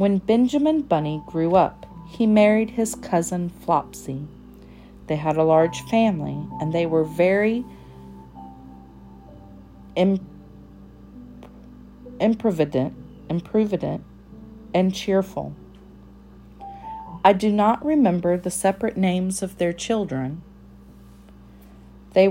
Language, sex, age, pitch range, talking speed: English, female, 40-59, 130-205 Hz, 90 wpm